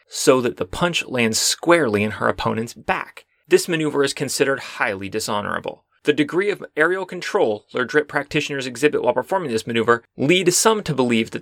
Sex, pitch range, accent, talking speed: male, 115-165 Hz, American, 180 wpm